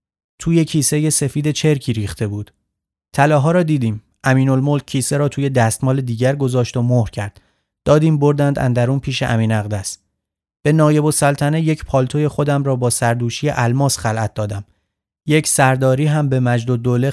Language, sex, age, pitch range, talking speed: Persian, male, 30-49, 120-145 Hz, 150 wpm